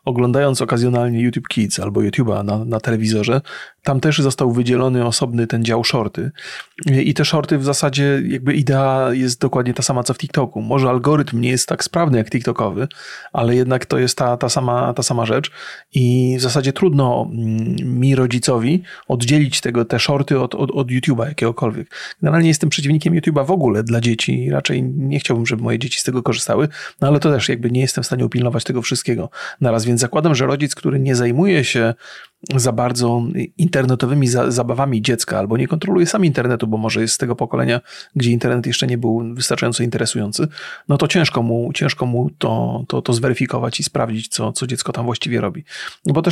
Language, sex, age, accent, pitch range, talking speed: Polish, male, 30-49, native, 120-145 Hz, 190 wpm